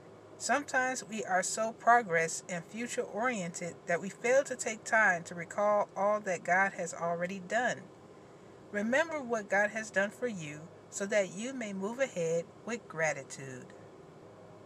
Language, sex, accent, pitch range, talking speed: English, female, American, 175-220 Hz, 150 wpm